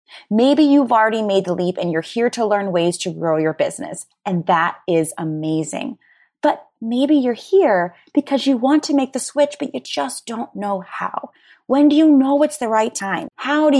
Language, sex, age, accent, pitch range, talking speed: English, female, 20-39, American, 195-275 Hz, 205 wpm